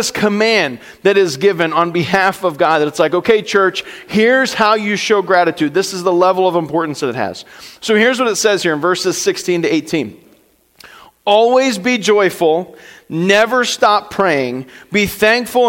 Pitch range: 170-215 Hz